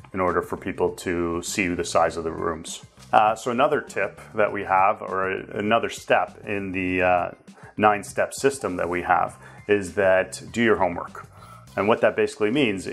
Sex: male